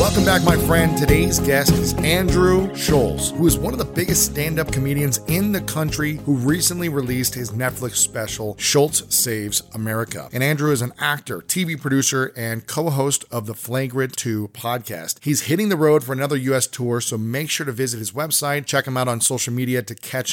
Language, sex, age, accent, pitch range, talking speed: English, male, 40-59, American, 120-150 Hz, 195 wpm